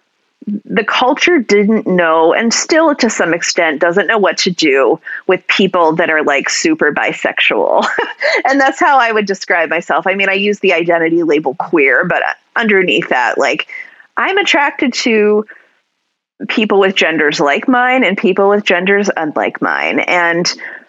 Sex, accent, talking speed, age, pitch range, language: female, American, 160 wpm, 30-49, 175-250 Hz, English